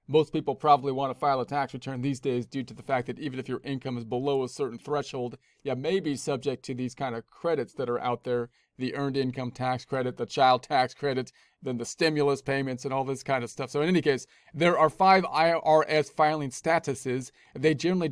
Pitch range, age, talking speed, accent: 130-150 Hz, 40-59, 230 wpm, American